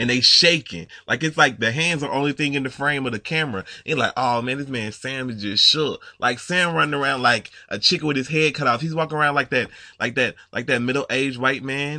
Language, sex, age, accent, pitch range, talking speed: English, male, 20-39, American, 120-160 Hz, 265 wpm